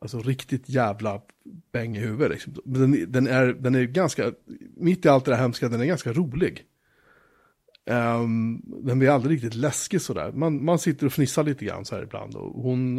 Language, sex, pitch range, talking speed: Swedish, male, 115-150 Hz, 190 wpm